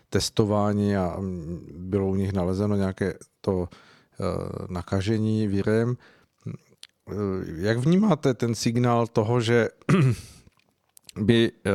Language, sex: Czech, male